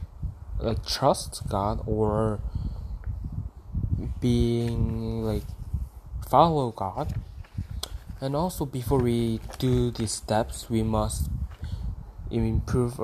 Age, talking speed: 20-39, 85 wpm